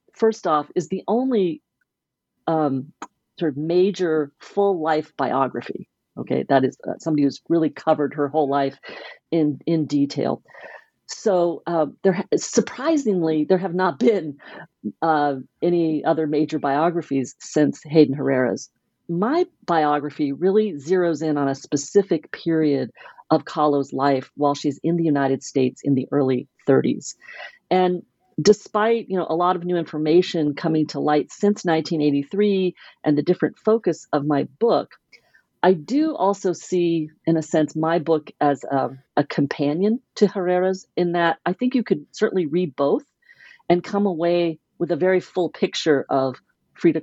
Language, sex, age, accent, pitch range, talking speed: English, female, 40-59, American, 145-185 Hz, 155 wpm